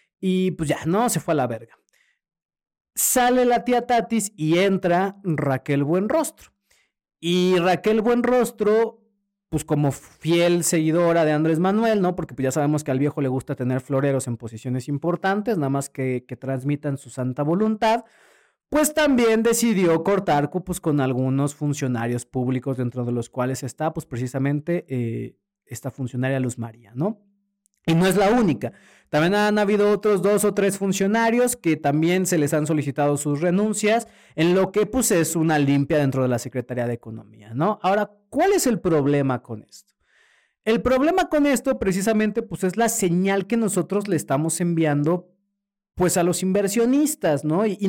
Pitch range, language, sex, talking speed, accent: 140-215 Hz, Spanish, male, 170 wpm, Mexican